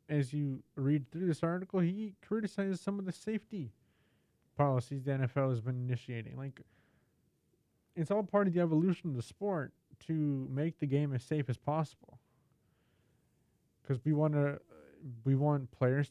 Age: 20-39